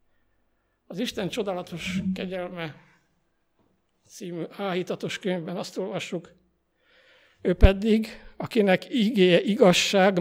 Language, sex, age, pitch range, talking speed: Hungarian, male, 60-79, 170-210 Hz, 80 wpm